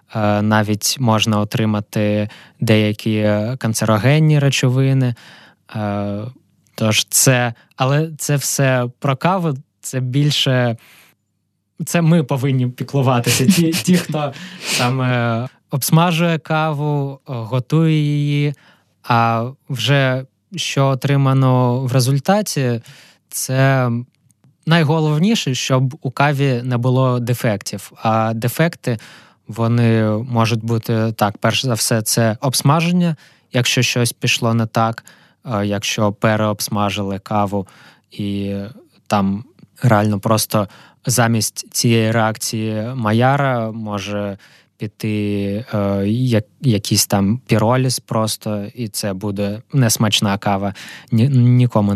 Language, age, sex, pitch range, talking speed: Ukrainian, 20-39, male, 110-135 Hz, 95 wpm